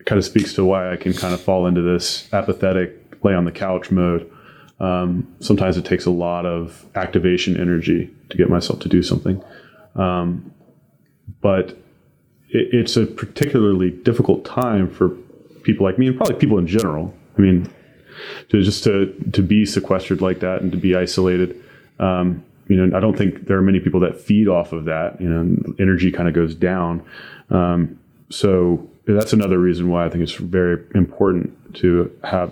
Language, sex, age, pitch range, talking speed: English, male, 30-49, 85-95 Hz, 180 wpm